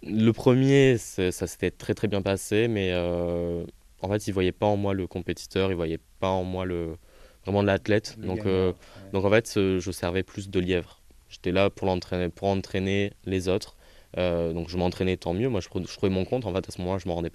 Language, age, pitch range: French, 20-39, 85-100 Hz